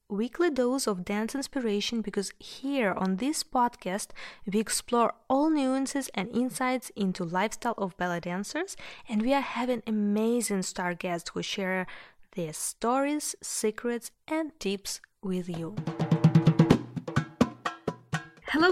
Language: English